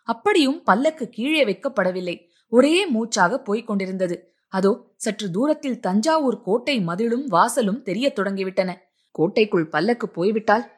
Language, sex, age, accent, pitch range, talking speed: Tamil, female, 20-39, native, 185-250 Hz, 110 wpm